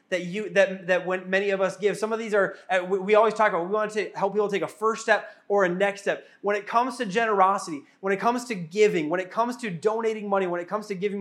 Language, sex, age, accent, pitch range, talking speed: English, male, 20-39, American, 190-225 Hz, 280 wpm